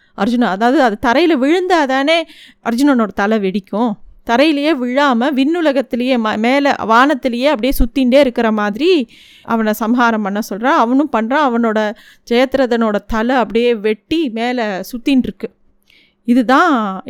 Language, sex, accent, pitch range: Tamil, female, native, 215-275 Hz